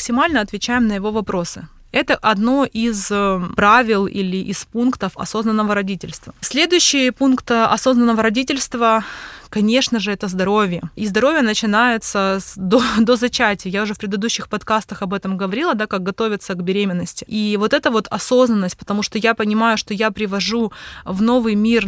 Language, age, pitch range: Russian, 20-39, 205-245 Hz